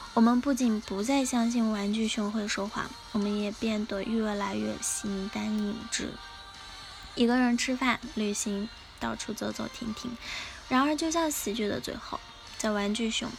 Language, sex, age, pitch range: Chinese, female, 10-29, 205-240 Hz